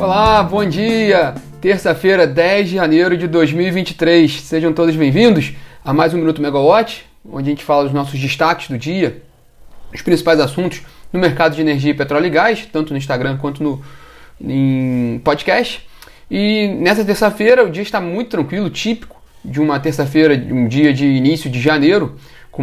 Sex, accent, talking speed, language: male, Brazilian, 165 wpm, Portuguese